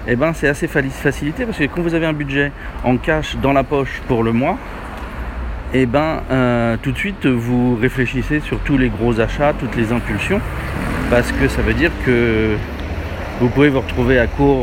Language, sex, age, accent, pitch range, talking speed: French, male, 40-59, French, 90-135 Hz, 190 wpm